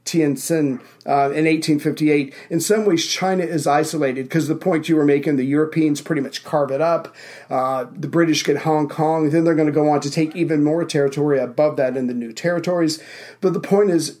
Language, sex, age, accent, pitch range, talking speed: English, male, 40-59, American, 145-170 Hz, 205 wpm